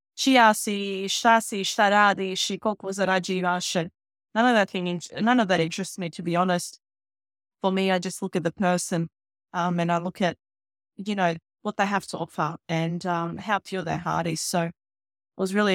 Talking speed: 165 wpm